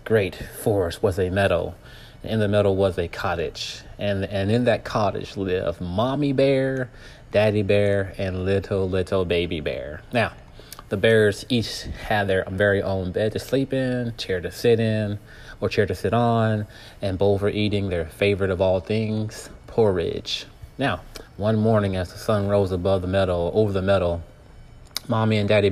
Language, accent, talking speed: English, American, 175 wpm